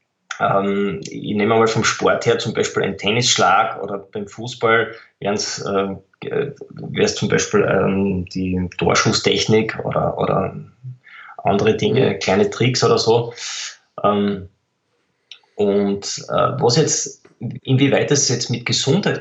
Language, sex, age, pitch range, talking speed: German, male, 20-39, 110-140 Hz, 105 wpm